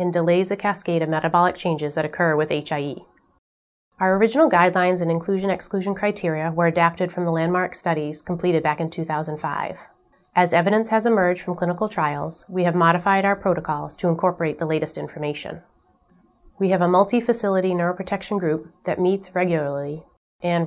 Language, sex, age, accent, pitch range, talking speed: English, female, 30-49, American, 160-190 Hz, 155 wpm